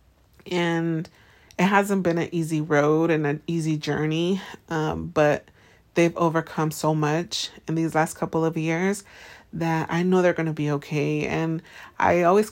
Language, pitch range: English, 155-175 Hz